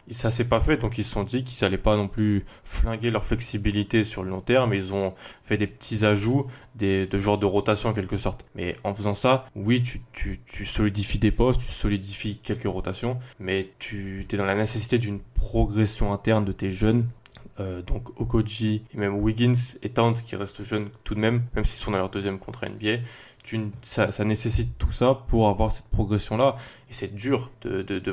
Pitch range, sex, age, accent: 100-115 Hz, male, 20-39, French